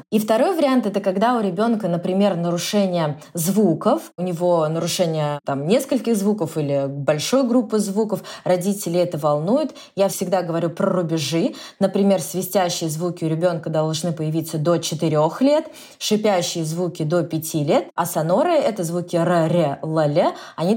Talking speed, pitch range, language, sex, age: 145 wpm, 165-205 Hz, Russian, female, 20-39